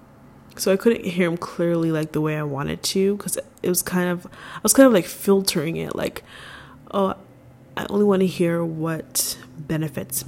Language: English